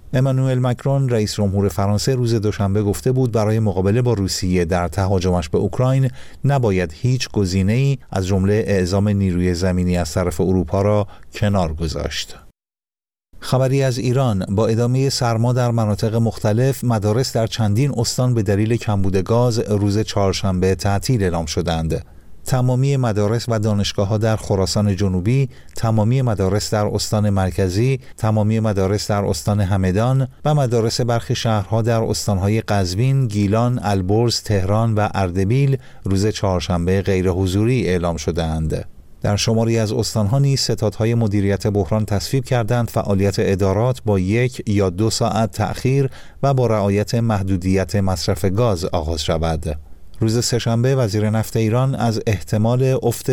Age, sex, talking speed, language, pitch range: 50-69, male, 140 wpm, Persian, 95-120 Hz